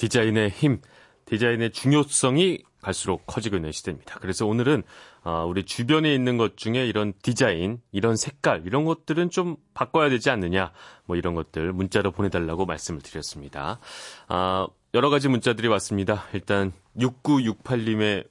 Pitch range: 90-135 Hz